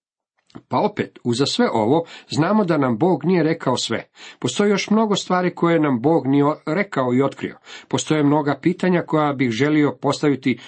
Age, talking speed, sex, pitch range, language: 50-69, 170 wpm, male, 120-155 Hz, Croatian